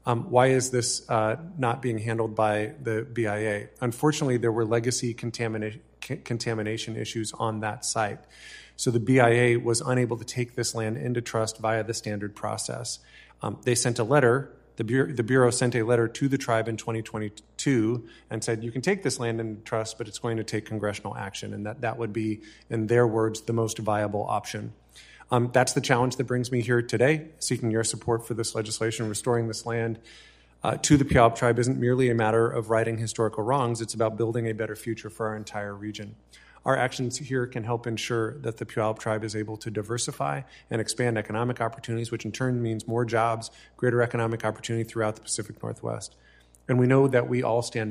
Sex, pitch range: male, 110-120 Hz